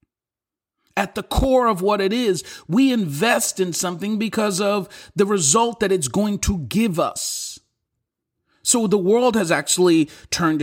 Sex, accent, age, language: male, American, 40-59, English